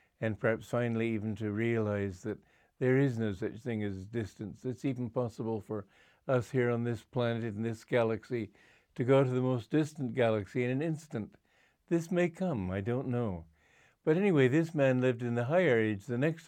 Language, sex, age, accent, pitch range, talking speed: English, male, 60-79, American, 105-130 Hz, 195 wpm